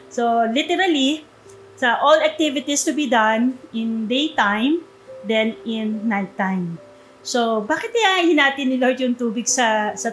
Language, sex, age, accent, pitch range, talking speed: Filipino, female, 20-39, native, 215-275 Hz, 140 wpm